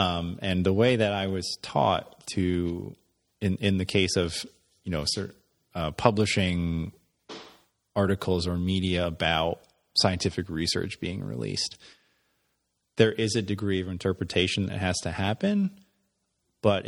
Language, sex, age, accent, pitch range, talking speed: English, male, 30-49, American, 90-100 Hz, 130 wpm